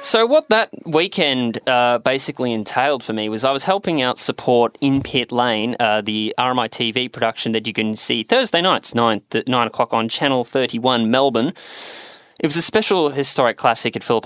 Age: 20-39